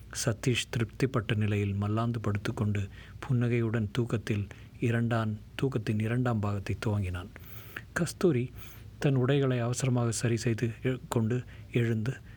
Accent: native